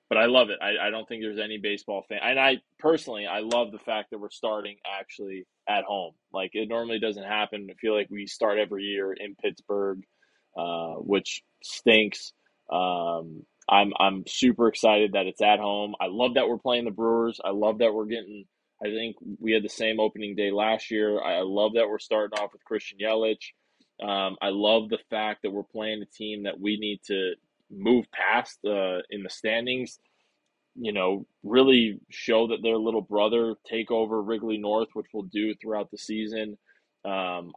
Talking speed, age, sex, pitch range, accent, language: 195 wpm, 20-39, male, 100-115 Hz, American, English